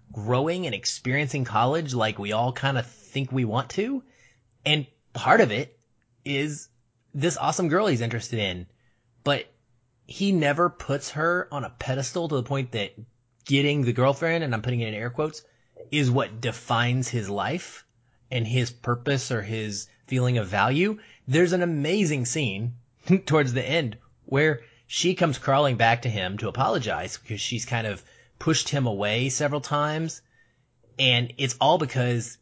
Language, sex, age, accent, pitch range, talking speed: English, male, 30-49, American, 115-140 Hz, 165 wpm